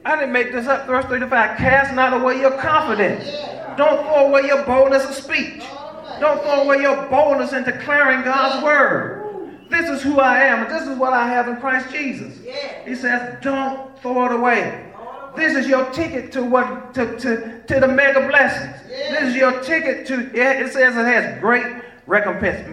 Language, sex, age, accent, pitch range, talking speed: English, male, 40-59, American, 195-270 Hz, 195 wpm